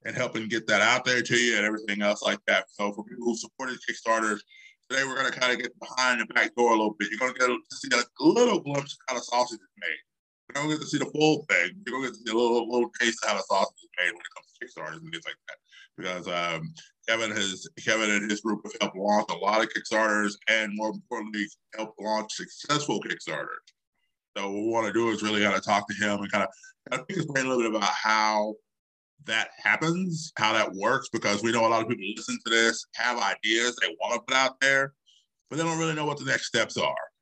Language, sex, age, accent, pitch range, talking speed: English, male, 20-39, American, 105-130 Hz, 250 wpm